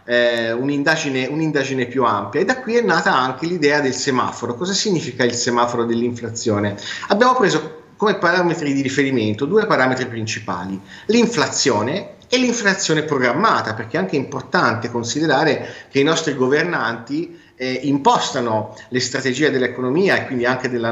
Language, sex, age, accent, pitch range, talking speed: Italian, male, 30-49, native, 120-155 Hz, 140 wpm